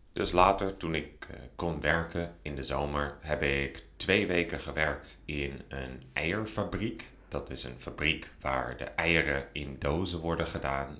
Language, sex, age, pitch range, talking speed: Dutch, male, 30-49, 70-85 Hz, 155 wpm